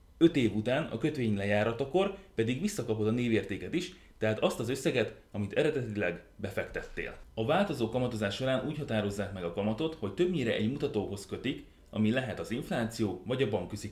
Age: 30-49